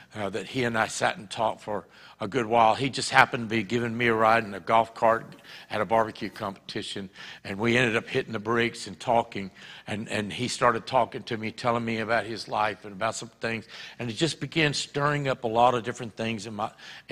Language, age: English, 60-79